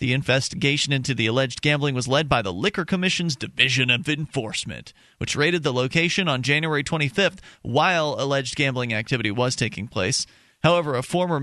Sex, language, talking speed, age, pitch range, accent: male, English, 170 wpm, 30-49, 130-165 Hz, American